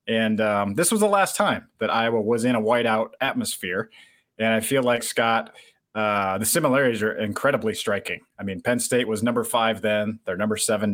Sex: male